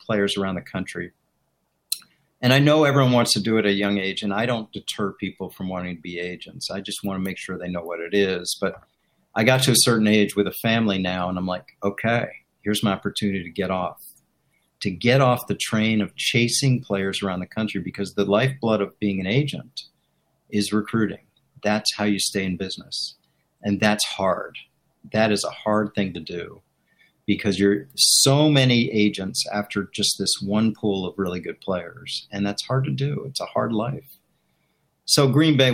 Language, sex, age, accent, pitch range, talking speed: English, male, 50-69, American, 100-115 Hz, 200 wpm